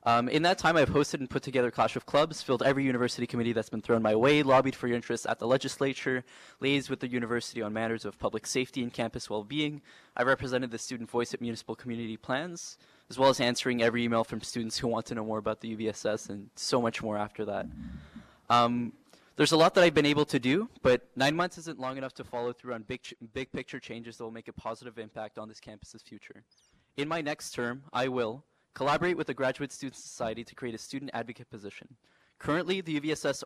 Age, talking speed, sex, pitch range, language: 10-29, 230 wpm, male, 115-135 Hz, English